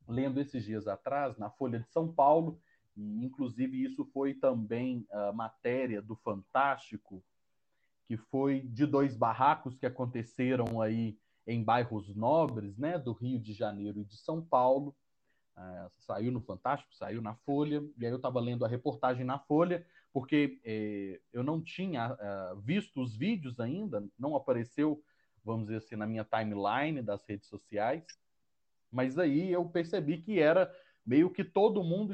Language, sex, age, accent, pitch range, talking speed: Portuguese, male, 30-49, Brazilian, 115-160 Hz, 150 wpm